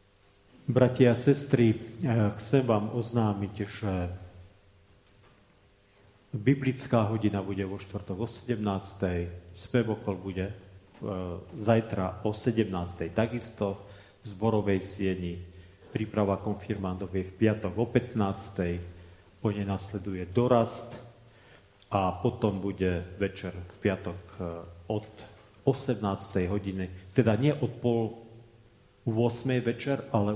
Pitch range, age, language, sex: 95-115 Hz, 40-59, Slovak, male